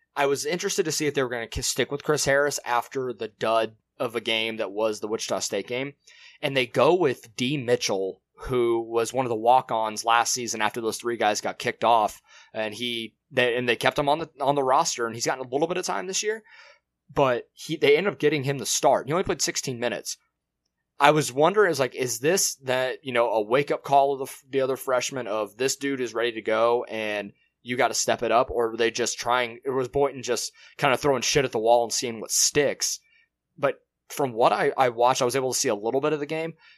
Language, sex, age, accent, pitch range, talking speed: English, male, 20-39, American, 115-140 Hz, 250 wpm